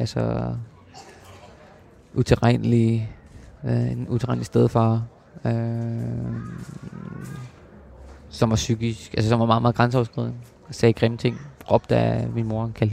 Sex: male